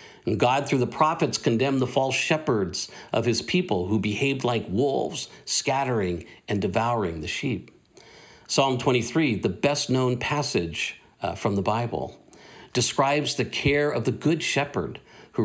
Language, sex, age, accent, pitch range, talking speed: English, male, 50-69, American, 110-140 Hz, 145 wpm